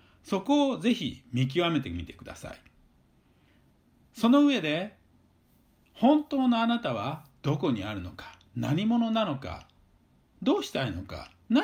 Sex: male